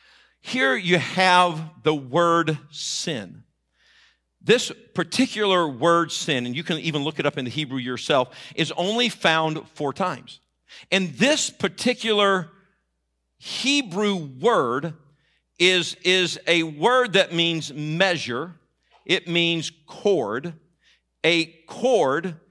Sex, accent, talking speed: male, American, 115 wpm